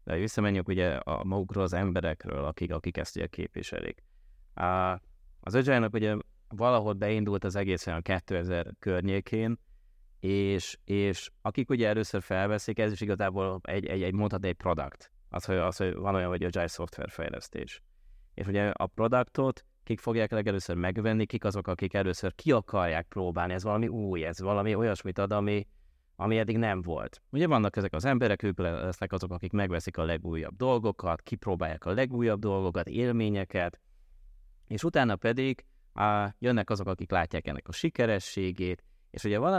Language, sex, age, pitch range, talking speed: Hungarian, male, 20-39, 90-110 Hz, 160 wpm